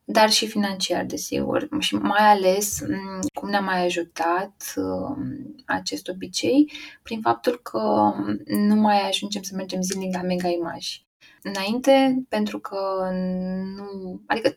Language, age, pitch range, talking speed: Romanian, 20-39, 170-220 Hz, 125 wpm